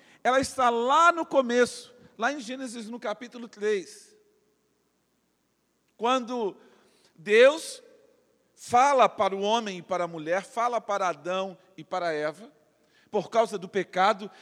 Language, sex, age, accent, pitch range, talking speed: Portuguese, male, 40-59, Brazilian, 165-235 Hz, 130 wpm